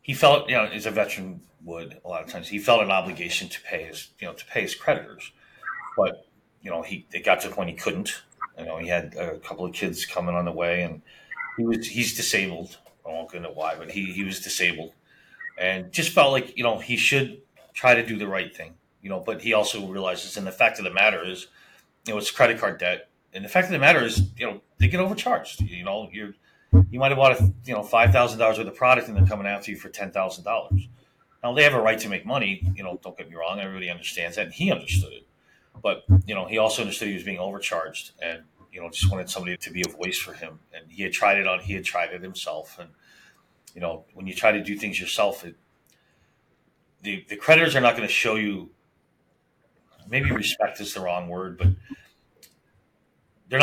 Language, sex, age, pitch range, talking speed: English, male, 30-49, 90-120 Hz, 240 wpm